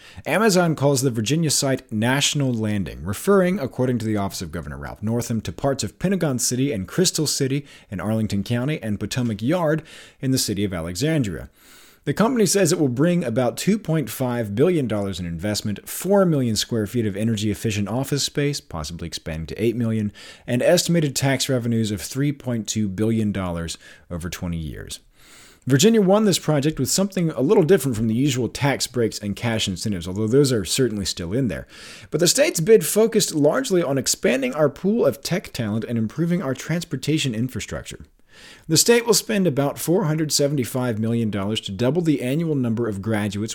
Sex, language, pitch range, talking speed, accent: male, English, 105-150 Hz, 170 wpm, American